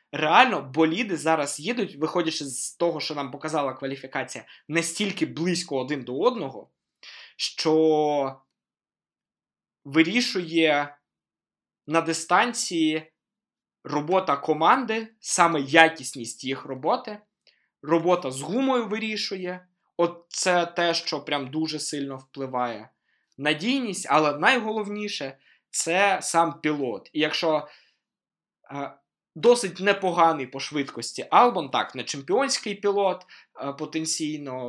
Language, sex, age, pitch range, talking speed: Ukrainian, male, 20-39, 140-180 Hz, 95 wpm